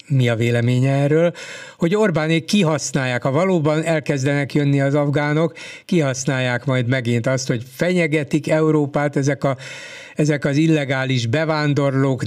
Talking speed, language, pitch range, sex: 125 wpm, Hungarian, 130-155 Hz, male